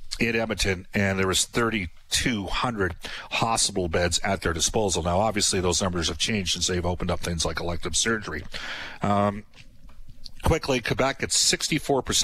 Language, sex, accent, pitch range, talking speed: English, male, American, 95-115 Hz, 140 wpm